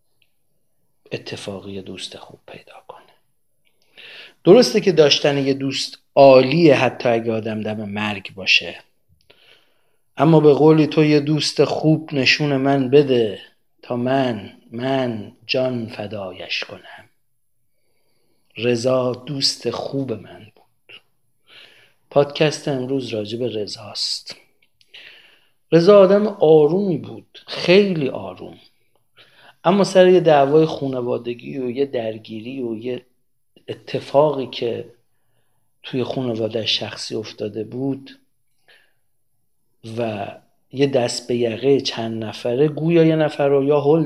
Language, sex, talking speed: Persian, male, 105 wpm